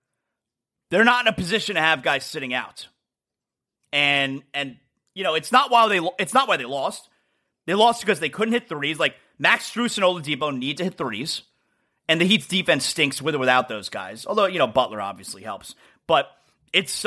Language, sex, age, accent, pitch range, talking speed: English, male, 30-49, American, 150-220 Hz, 200 wpm